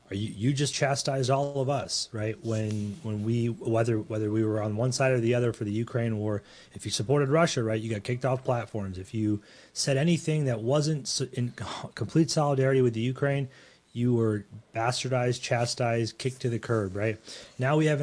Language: English